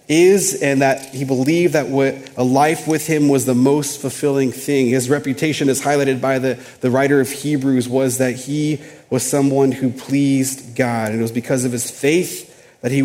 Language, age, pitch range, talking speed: English, 30-49, 125-145 Hz, 200 wpm